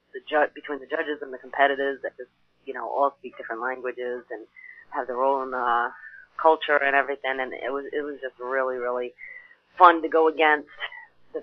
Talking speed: 195 wpm